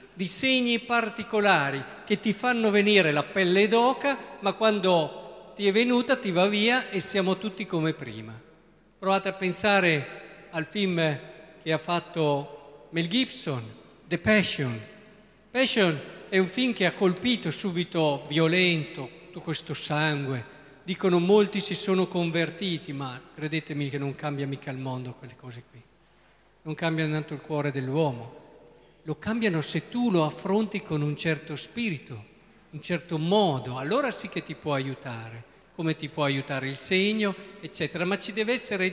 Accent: native